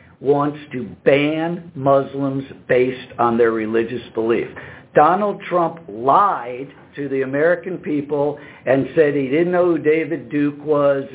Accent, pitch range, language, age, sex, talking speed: American, 135-175 Hz, English, 60-79, male, 135 wpm